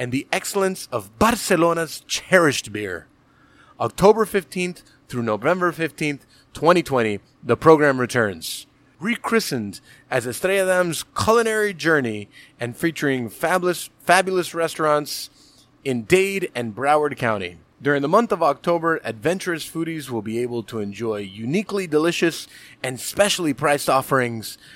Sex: male